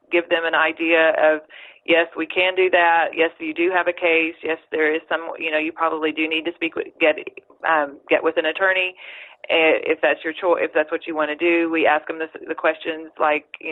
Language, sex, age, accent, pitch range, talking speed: English, female, 30-49, American, 160-180 Hz, 235 wpm